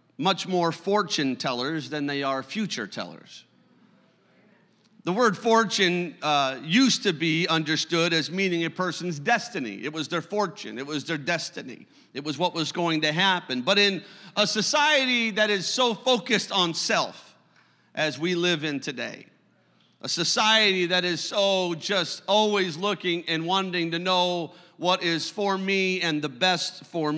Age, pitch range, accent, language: 50-69, 160-205 Hz, American, English